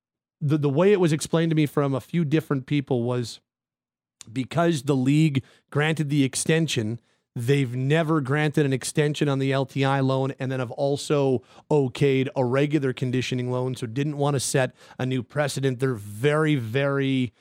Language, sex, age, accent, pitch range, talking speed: English, male, 40-59, American, 130-155 Hz, 170 wpm